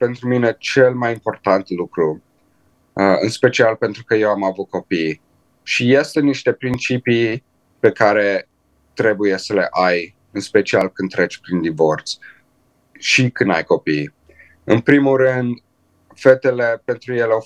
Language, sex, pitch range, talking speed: Romanian, male, 95-125 Hz, 140 wpm